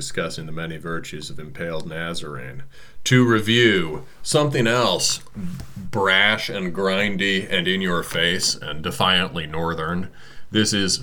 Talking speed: 125 wpm